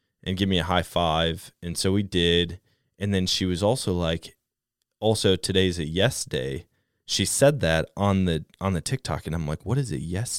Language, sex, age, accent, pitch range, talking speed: English, male, 20-39, American, 90-120 Hz, 210 wpm